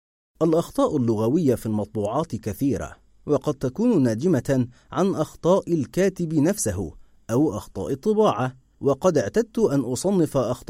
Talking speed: 110 wpm